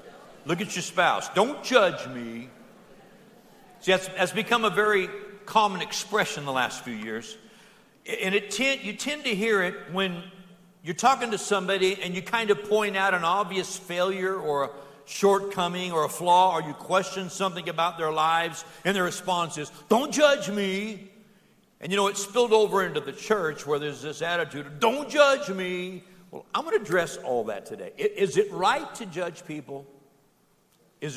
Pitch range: 165-210 Hz